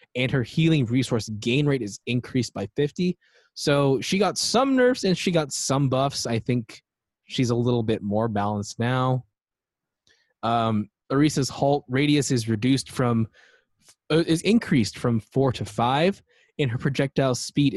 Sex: male